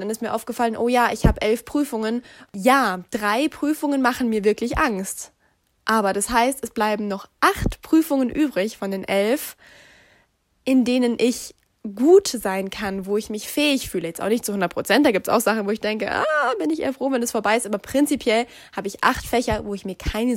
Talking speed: 220 wpm